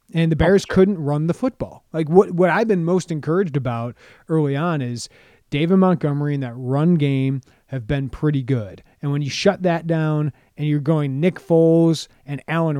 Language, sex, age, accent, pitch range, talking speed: English, male, 30-49, American, 135-175 Hz, 190 wpm